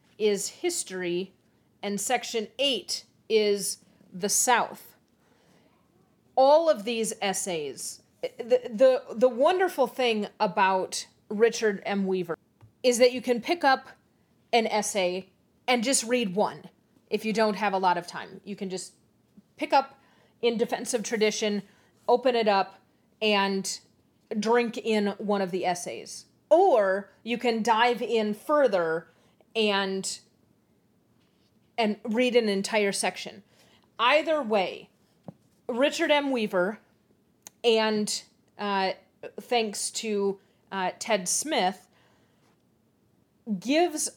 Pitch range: 195-245 Hz